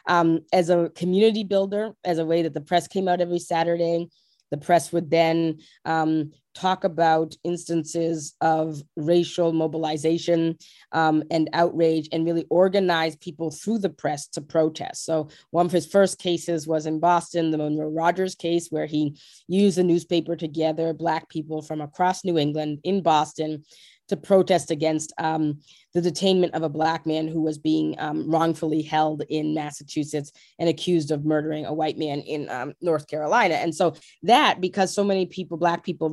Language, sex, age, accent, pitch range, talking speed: English, female, 20-39, American, 155-175 Hz, 175 wpm